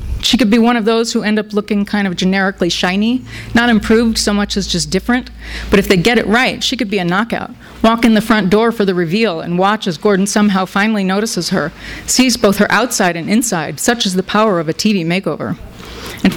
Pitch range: 190-235 Hz